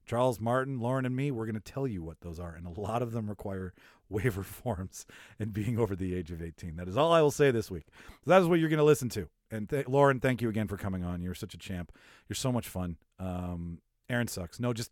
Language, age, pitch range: English, 40-59, 95-140 Hz